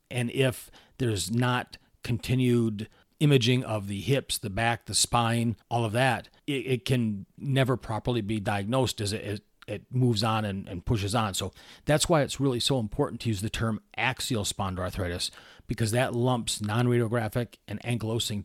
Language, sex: English, male